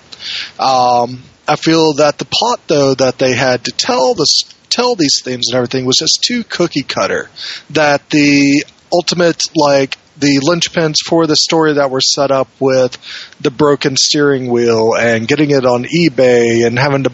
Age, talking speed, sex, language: 30-49, 170 wpm, male, English